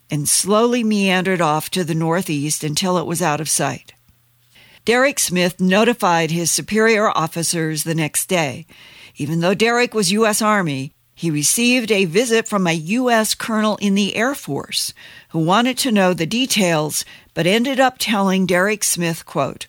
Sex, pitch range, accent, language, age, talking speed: female, 155-215 Hz, American, English, 50-69, 160 wpm